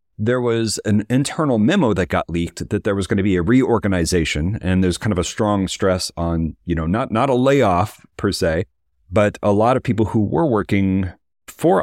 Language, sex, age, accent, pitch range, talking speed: English, male, 40-59, American, 90-115 Hz, 210 wpm